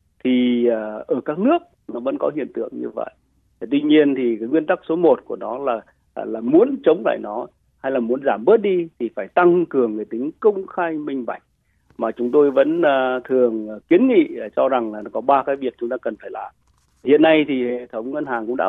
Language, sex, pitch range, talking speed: Vietnamese, male, 125-180 Hz, 230 wpm